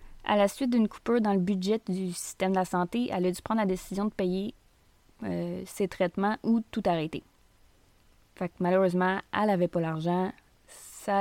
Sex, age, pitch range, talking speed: female, 20-39, 175-210 Hz, 185 wpm